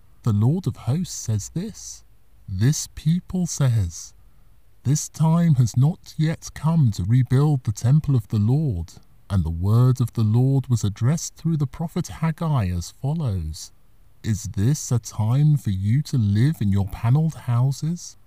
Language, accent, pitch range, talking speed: English, British, 105-150 Hz, 160 wpm